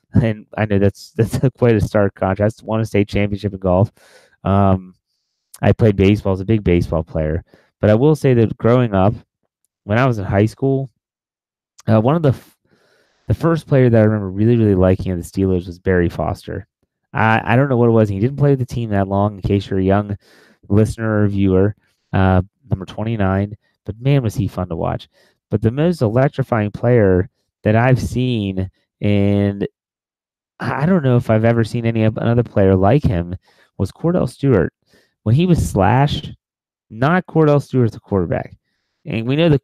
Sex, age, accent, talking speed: male, 30-49, American, 195 wpm